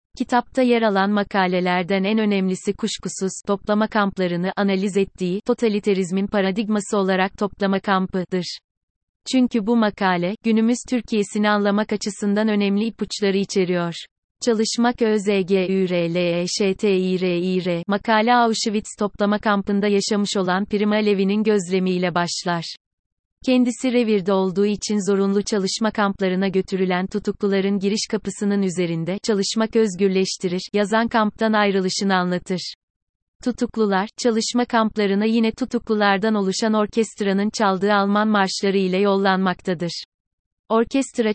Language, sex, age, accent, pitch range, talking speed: Turkish, female, 30-49, native, 190-215 Hz, 100 wpm